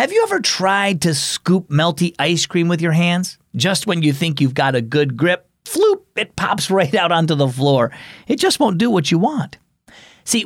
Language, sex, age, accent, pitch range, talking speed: English, male, 40-59, American, 120-195 Hz, 210 wpm